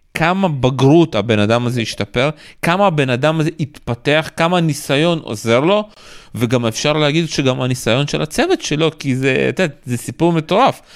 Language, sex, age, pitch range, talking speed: Hebrew, male, 30-49, 135-180 Hz, 165 wpm